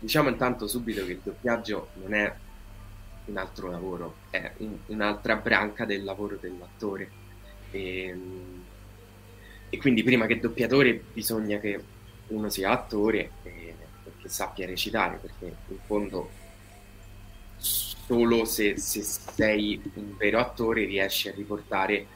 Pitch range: 95-105 Hz